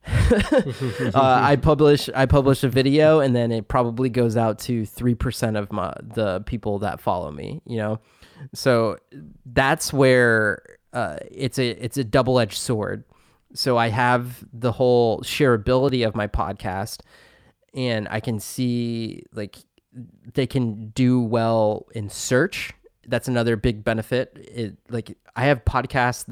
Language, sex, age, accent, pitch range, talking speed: English, male, 20-39, American, 110-125 Hz, 145 wpm